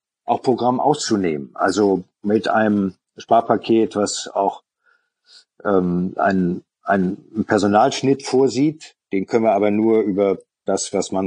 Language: German